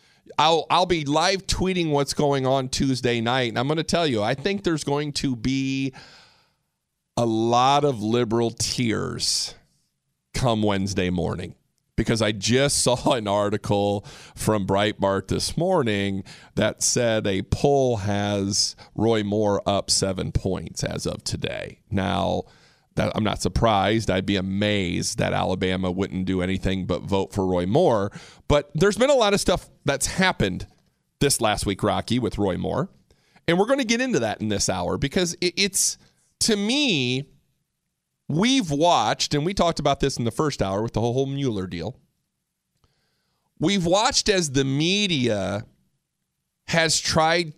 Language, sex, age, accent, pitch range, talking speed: English, male, 40-59, American, 100-155 Hz, 155 wpm